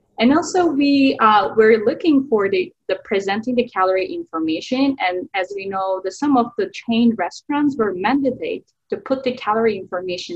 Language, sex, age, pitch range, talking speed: English, female, 20-39, 190-275 Hz, 175 wpm